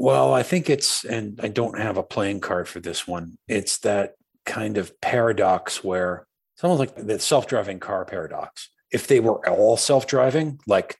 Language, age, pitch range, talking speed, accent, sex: English, 40-59, 90-115 Hz, 180 wpm, American, male